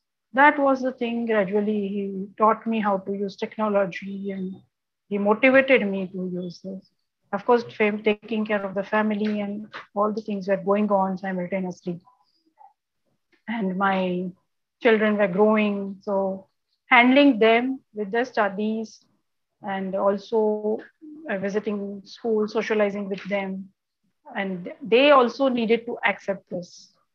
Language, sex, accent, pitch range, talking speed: English, female, Indian, 195-230 Hz, 135 wpm